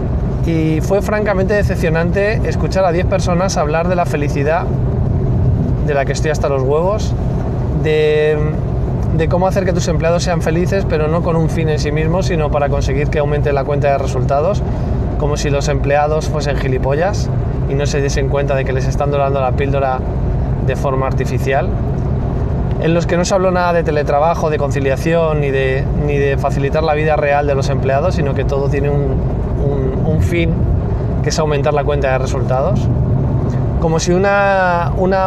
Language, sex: Spanish, male